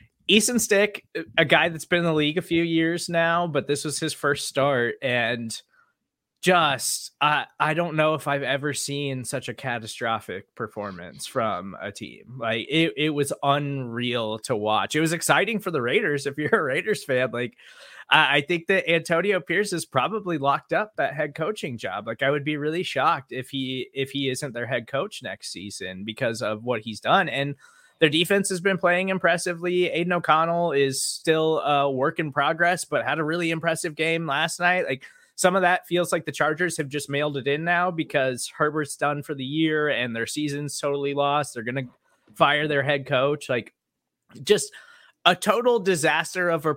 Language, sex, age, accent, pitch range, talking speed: English, male, 20-39, American, 135-170 Hz, 195 wpm